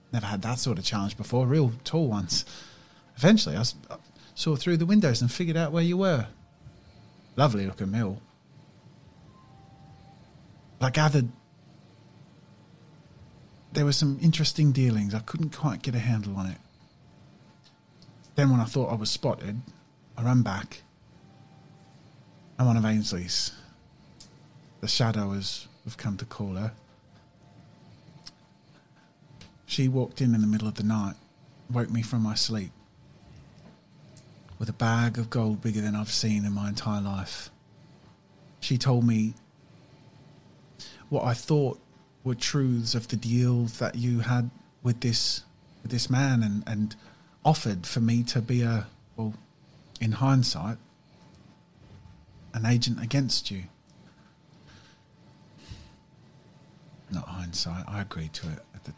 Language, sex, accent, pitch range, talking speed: English, male, British, 105-140 Hz, 130 wpm